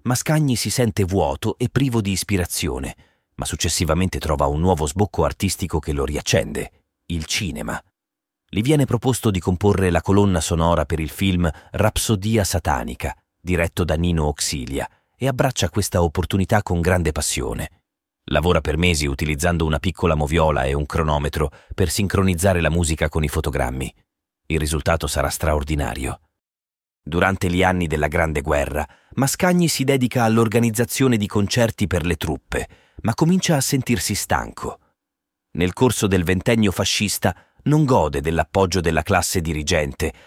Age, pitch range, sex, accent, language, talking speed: 40-59, 80-110 Hz, male, native, Italian, 145 wpm